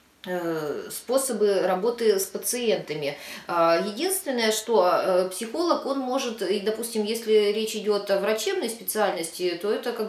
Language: Russian